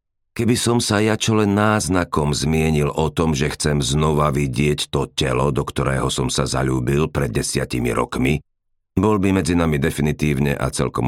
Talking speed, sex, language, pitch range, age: 155 wpm, male, Slovak, 70-95 Hz, 50-69